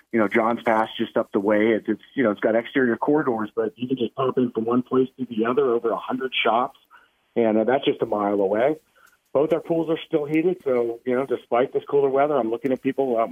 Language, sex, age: English, male, 40-59